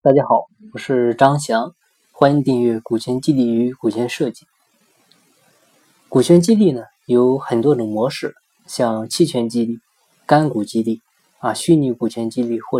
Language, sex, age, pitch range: Chinese, male, 20-39, 115-155 Hz